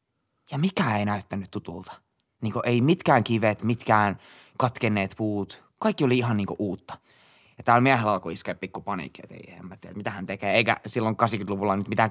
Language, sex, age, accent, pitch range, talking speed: Finnish, male, 20-39, native, 100-125 Hz, 165 wpm